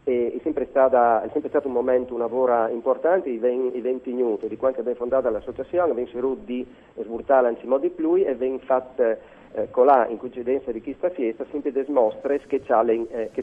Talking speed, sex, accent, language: 205 wpm, male, native, Italian